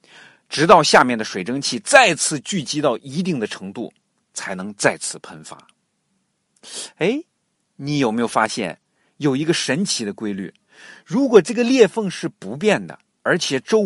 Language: Chinese